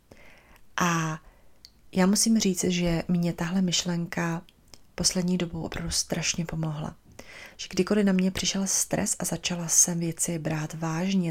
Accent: Czech